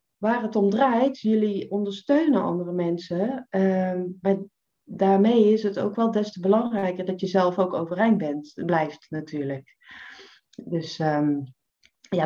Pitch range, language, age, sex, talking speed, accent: 170-215 Hz, Dutch, 30-49, female, 140 wpm, Dutch